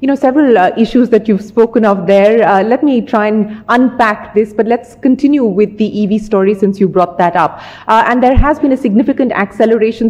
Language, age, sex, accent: English, 30-49, female, Indian